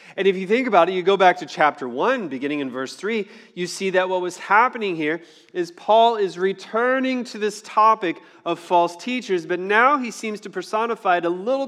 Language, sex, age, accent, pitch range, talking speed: English, male, 30-49, American, 135-195 Hz, 215 wpm